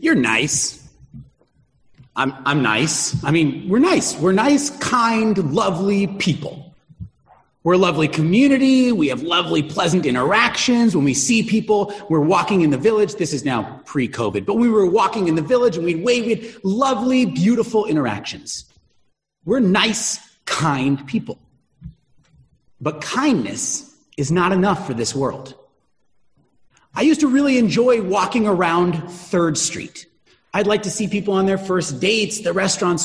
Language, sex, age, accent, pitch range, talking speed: English, male, 30-49, American, 155-220 Hz, 150 wpm